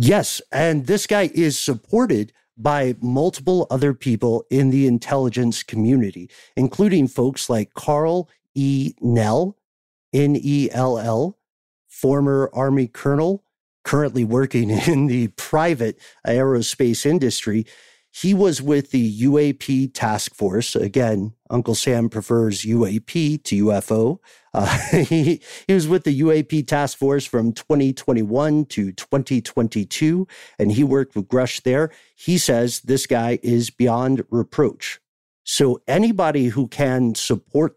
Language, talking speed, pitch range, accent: English, 120 wpm, 115-150 Hz, American